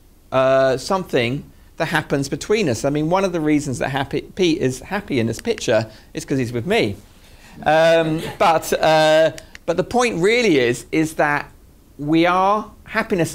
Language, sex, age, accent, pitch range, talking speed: English, male, 50-69, British, 125-165 Hz, 170 wpm